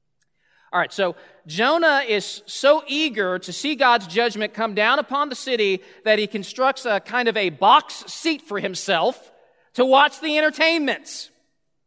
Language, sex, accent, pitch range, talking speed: English, male, American, 185-265 Hz, 155 wpm